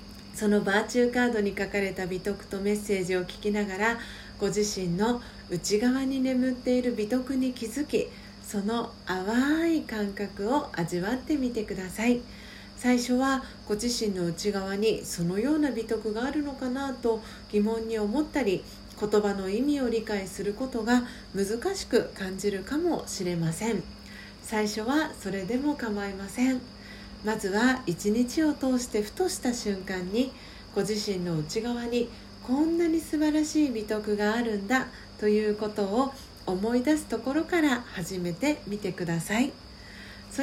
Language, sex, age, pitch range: Japanese, female, 40-59, 195-255 Hz